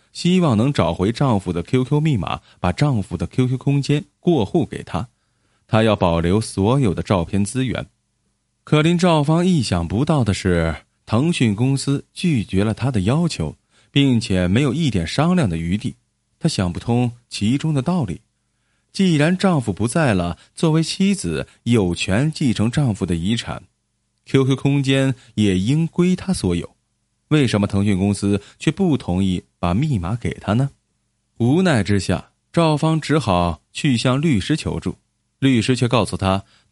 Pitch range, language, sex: 100-145 Hz, Chinese, male